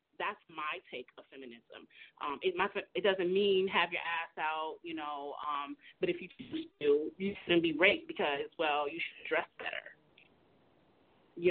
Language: English